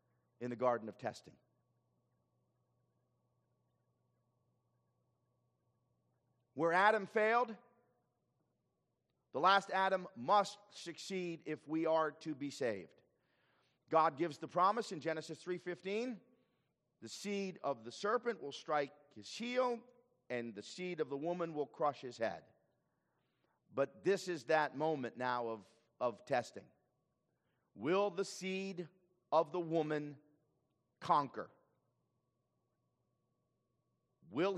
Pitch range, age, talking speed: 120-170 Hz, 50-69, 110 wpm